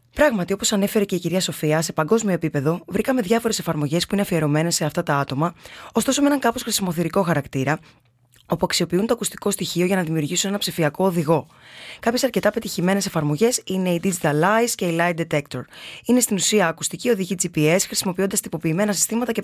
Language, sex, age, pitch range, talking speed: Greek, female, 20-39, 160-205 Hz, 180 wpm